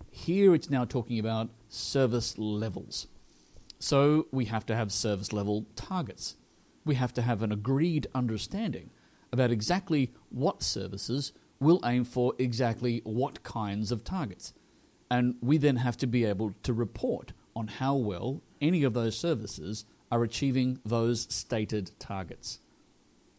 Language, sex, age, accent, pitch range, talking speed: English, male, 40-59, Australian, 110-140 Hz, 140 wpm